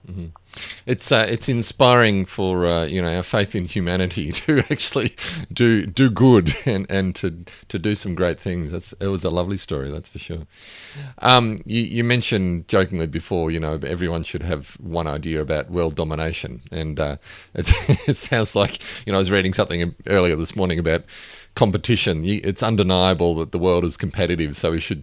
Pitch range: 85-105 Hz